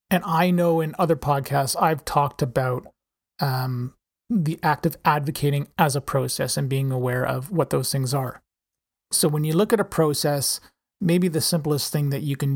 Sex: male